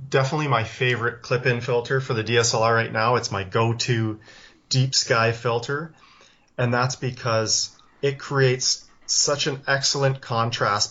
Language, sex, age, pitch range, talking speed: English, male, 30-49, 115-135 Hz, 140 wpm